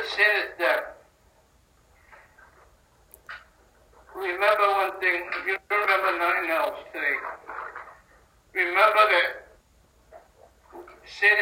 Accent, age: American, 60-79